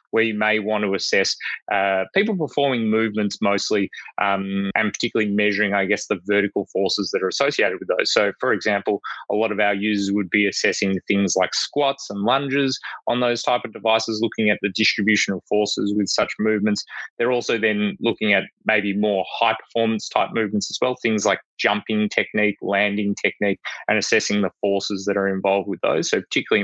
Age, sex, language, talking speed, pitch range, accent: 20-39, male, English, 190 wpm, 100-115 Hz, Australian